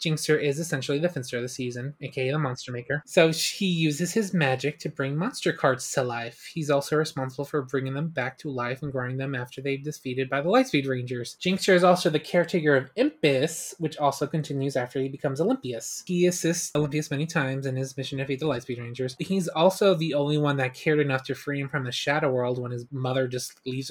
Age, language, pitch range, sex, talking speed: 20-39, English, 130-170 Hz, male, 225 wpm